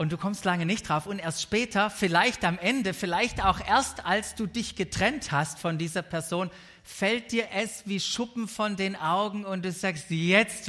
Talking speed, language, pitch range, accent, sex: 195 wpm, German, 150-210 Hz, German, male